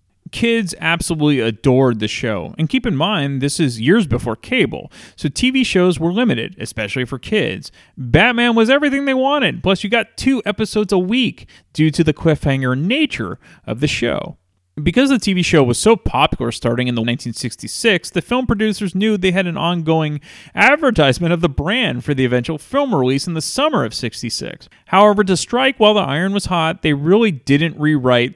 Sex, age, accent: male, 30-49, American